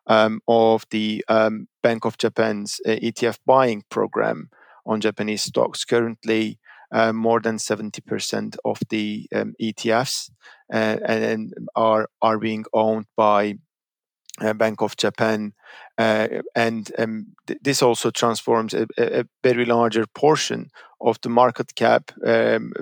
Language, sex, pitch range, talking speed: English, male, 110-125 Hz, 135 wpm